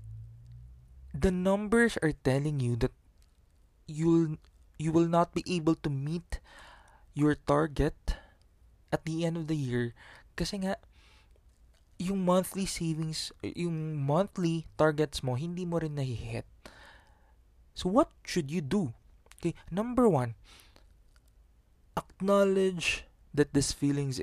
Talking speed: 120 wpm